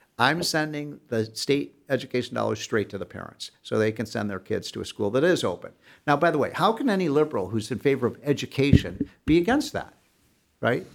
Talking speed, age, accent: 215 wpm, 60-79, American